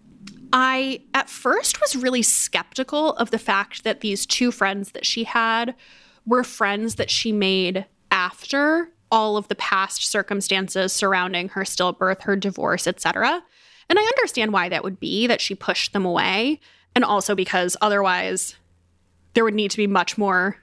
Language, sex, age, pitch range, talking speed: English, female, 20-39, 190-235 Hz, 165 wpm